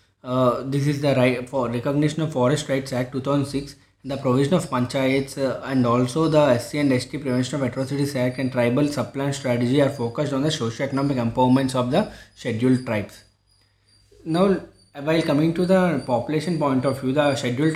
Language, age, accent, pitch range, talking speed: English, 20-39, Indian, 125-150 Hz, 170 wpm